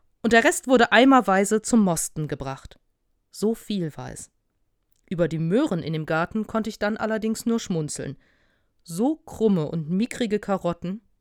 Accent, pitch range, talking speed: German, 175-230 Hz, 155 wpm